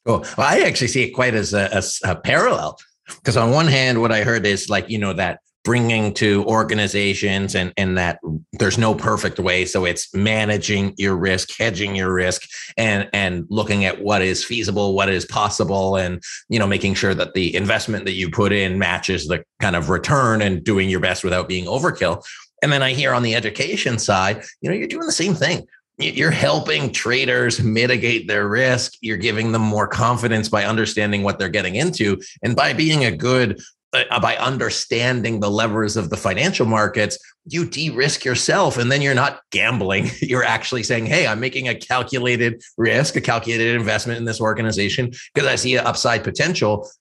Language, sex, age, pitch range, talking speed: English, male, 30-49, 100-120 Hz, 190 wpm